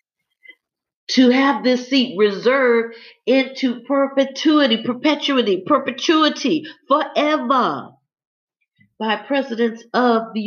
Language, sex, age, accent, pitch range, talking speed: English, female, 50-69, American, 190-255 Hz, 80 wpm